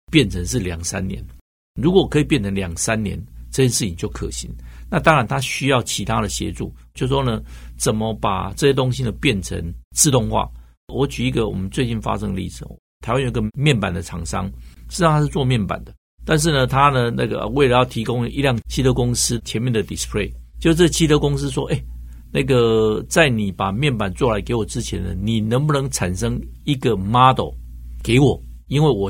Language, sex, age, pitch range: Chinese, male, 60-79, 95-135 Hz